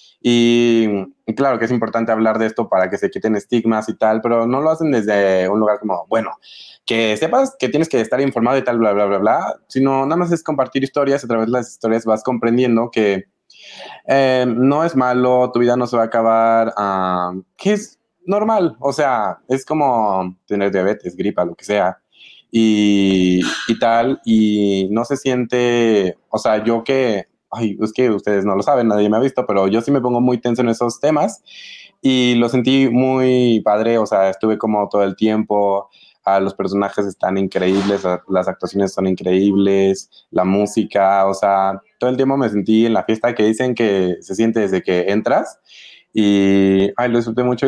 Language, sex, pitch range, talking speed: Spanish, male, 100-125 Hz, 195 wpm